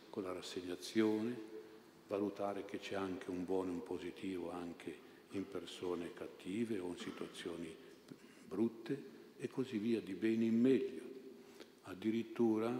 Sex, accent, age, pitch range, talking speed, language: male, native, 50-69, 95-110 Hz, 130 wpm, Italian